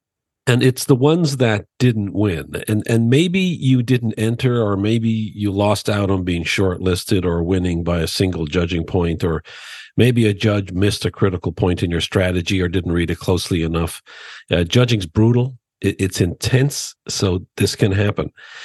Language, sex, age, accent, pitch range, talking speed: English, male, 50-69, American, 90-115 Hz, 175 wpm